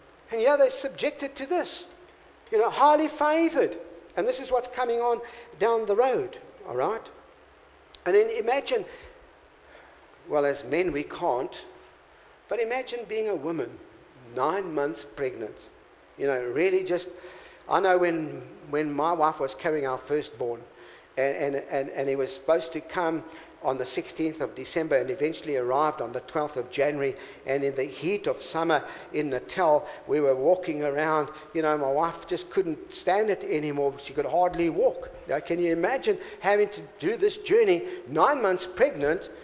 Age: 60-79